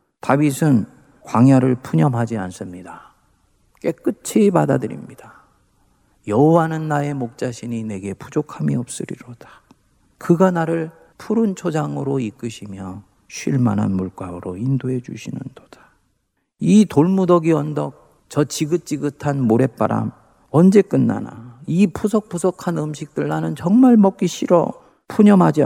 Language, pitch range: Korean, 115-175 Hz